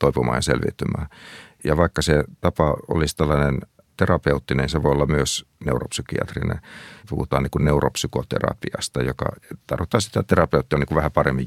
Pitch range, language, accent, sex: 70-80 Hz, Finnish, native, male